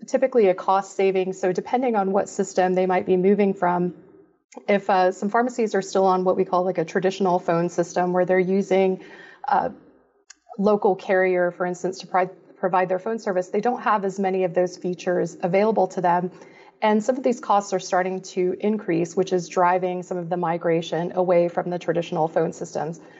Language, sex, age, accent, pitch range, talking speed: English, female, 30-49, American, 180-200 Hz, 195 wpm